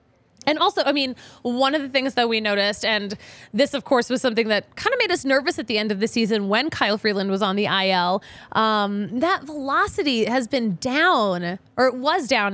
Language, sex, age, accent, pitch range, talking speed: English, female, 20-39, American, 210-295 Hz, 220 wpm